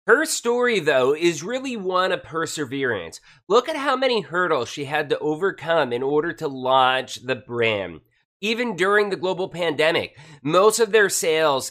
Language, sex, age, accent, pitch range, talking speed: English, male, 30-49, American, 155-220 Hz, 165 wpm